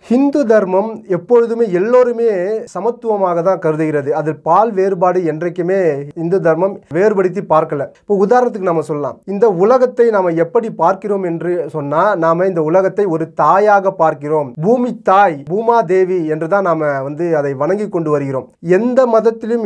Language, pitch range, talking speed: Tamil, 165-210 Hz, 135 wpm